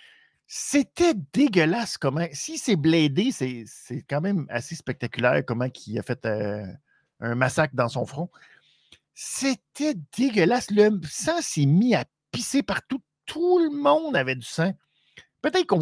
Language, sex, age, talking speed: French, male, 50-69, 150 wpm